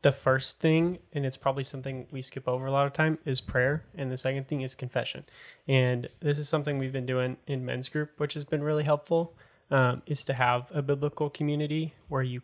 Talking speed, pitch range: 220 wpm, 130-145 Hz